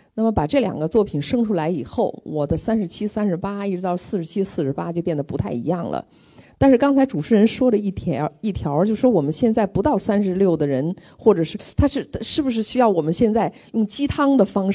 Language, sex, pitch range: Chinese, female, 175-260 Hz